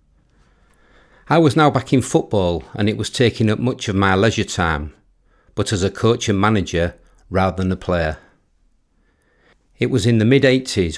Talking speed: 170 wpm